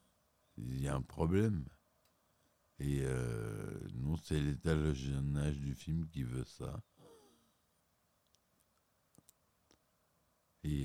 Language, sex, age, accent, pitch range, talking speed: French, male, 60-79, French, 70-90 Hz, 100 wpm